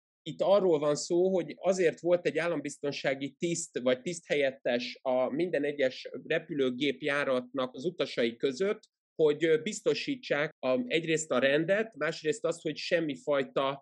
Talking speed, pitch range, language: 130 wpm, 135-175 Hz, Hungarian